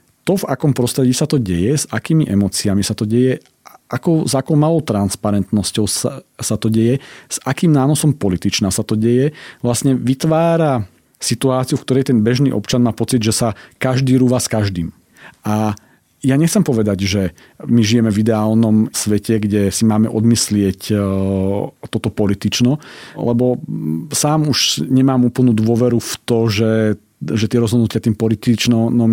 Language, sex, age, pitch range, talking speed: Slovak, male, 40-59, 110-130 Hz, 150 wpm